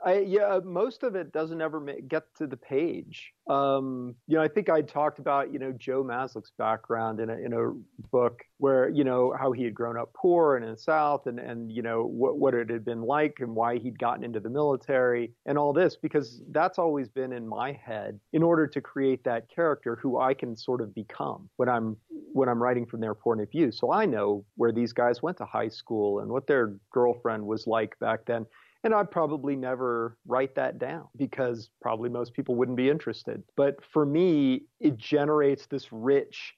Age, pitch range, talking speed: 40-59, 115-140 Hz, 215 wpm